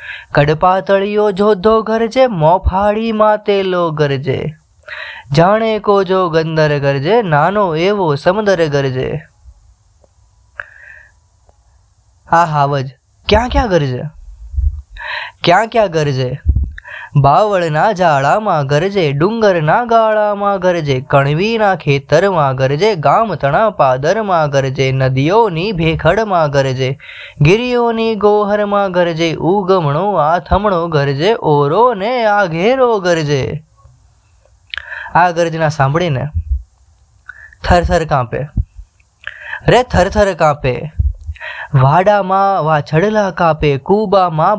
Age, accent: 10-29, native